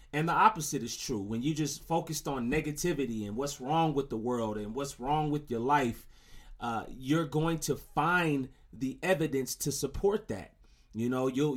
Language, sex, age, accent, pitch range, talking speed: English, male, 30-49, American, 125-150 Hz, 185 wpm